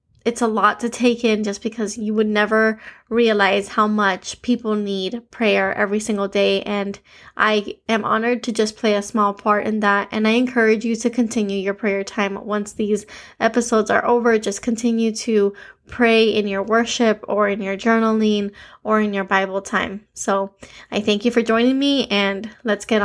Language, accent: English, American